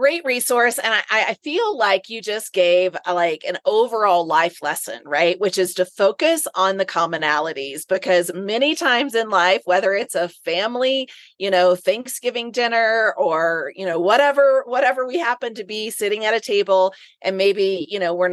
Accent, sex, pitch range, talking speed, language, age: American, female, 175-215 Hz, 180 wpm, English, 30-49